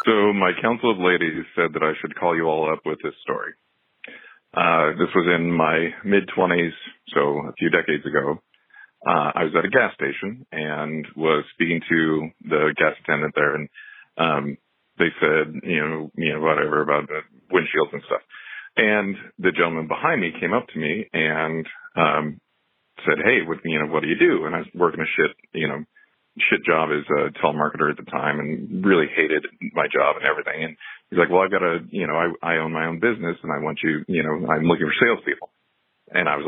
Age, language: 40-59, English